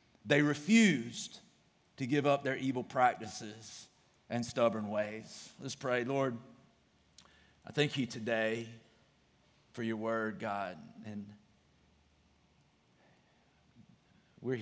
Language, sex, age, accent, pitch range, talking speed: English, male, 40-59, American, 100-115 Hz, 100 wpm